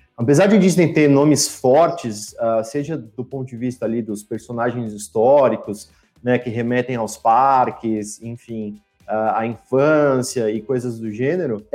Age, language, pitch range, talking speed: 30-49, English, 115-145 Hz, 135 wpm